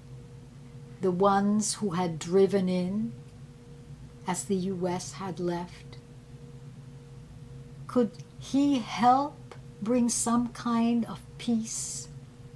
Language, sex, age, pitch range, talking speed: English, female, 60-79, 130-195 Hz, 90 wpm